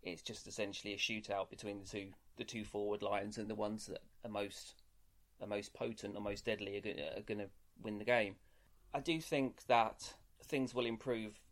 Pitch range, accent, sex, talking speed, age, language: 100-115 Hz, British, male, 205 wpm, 30-49, English